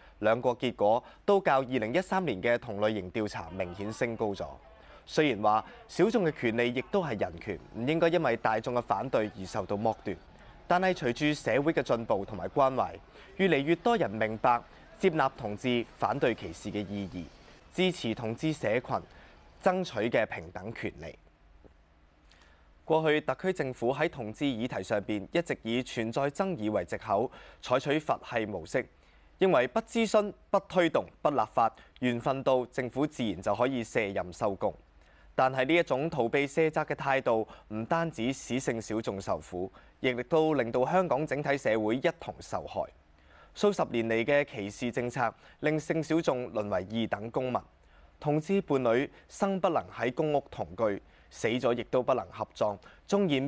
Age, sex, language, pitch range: 20-39, male, Chinese, 105-155 Hz